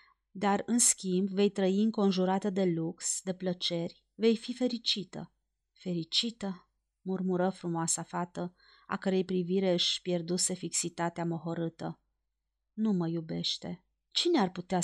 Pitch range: 175-230 Hz